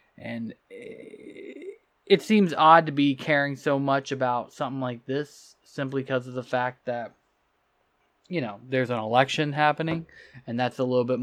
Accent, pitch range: American, 130-160 Hz